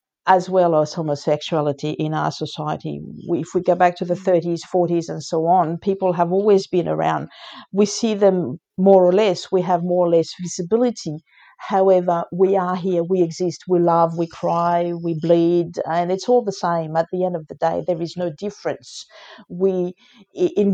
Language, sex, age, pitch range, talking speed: English, female, 50-69, 170-195 Hz, 185 wpm